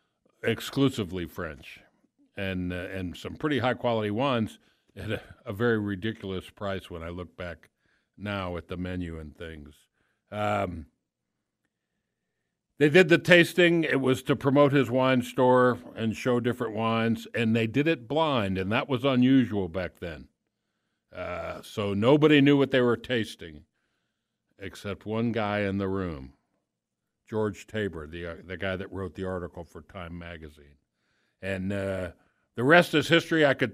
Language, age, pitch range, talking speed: English, 60-79, 95-130 Hz, 155 wpm